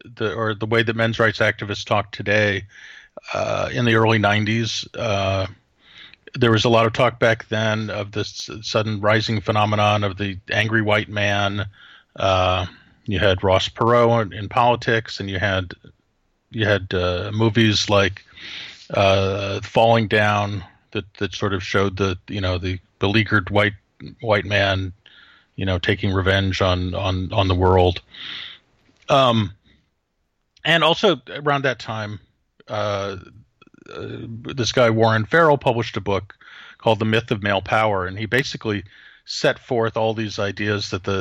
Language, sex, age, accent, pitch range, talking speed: English, male, 40-59, American, 95-115 Hz, 150 wpm